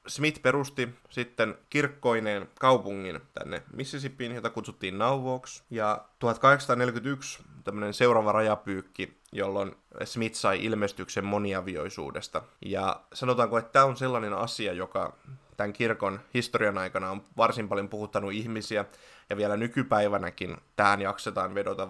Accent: native